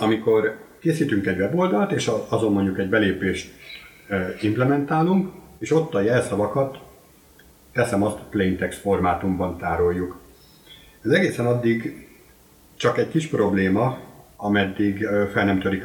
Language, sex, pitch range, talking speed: Hungarian, male, 95-120 Hz, 115 wpm